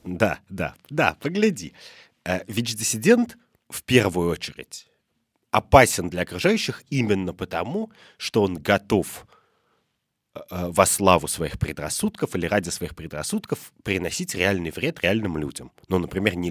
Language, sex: Russian, male